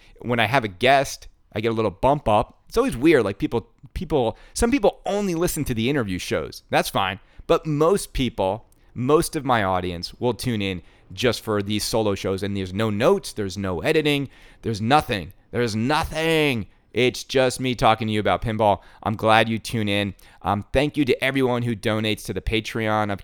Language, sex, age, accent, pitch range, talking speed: English, male, 30-49, American, 105-135 Hz, 200 wpm